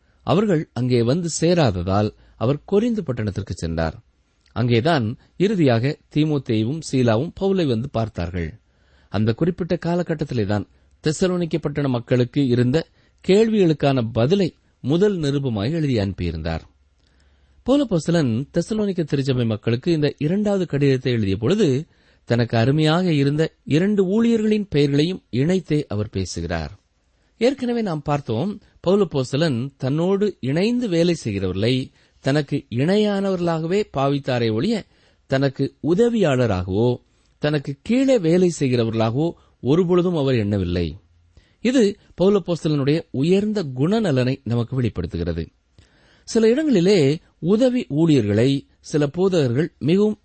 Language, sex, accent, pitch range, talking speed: Tamil, male, native, 110-175 Hz, 95 wpm